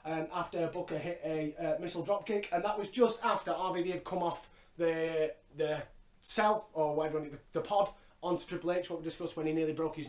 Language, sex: English, male